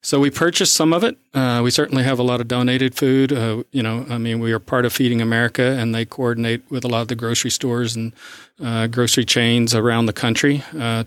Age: 40-59